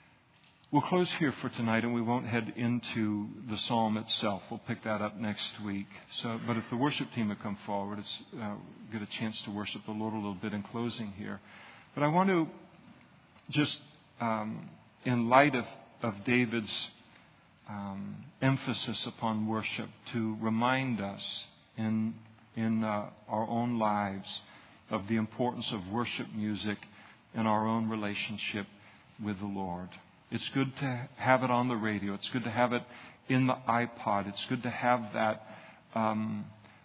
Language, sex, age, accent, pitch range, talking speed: English, male, 50-69, American, 110-130 Hz, 165 wpm